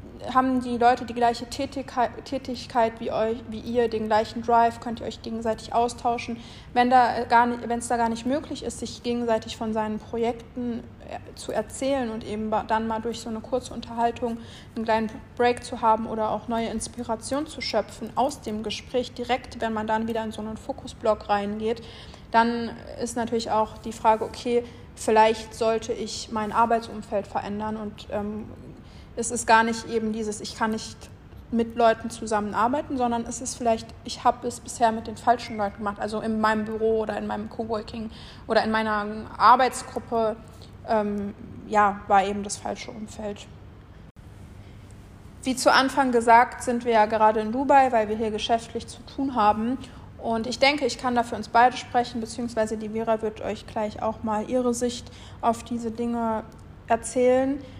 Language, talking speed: German, 170 wpm